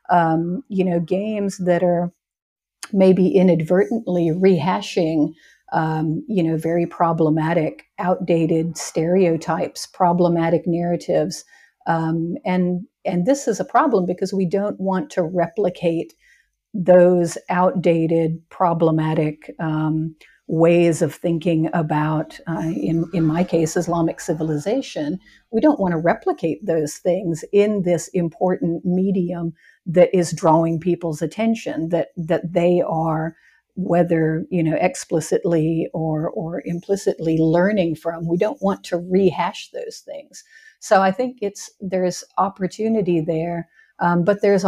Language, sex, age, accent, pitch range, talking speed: English, female, 50-69, American, 165-190 Hz, 125 wpm